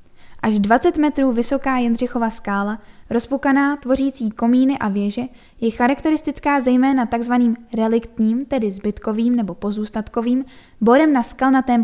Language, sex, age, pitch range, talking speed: Czech, female, 10-29, 225-270 Hz, 115 wpm